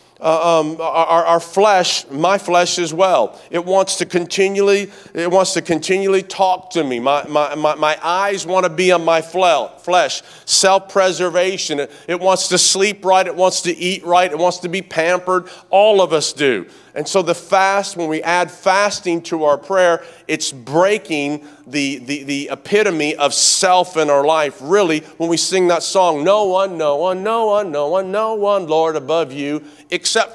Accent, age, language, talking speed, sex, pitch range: American, 40-59, English, 185 wpm, male, 155-195 Hz